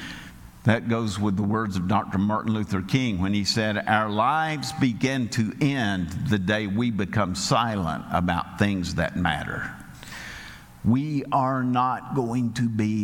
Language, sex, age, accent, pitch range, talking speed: English, male, 50-69, American, 110-150 Hz, 150 wpm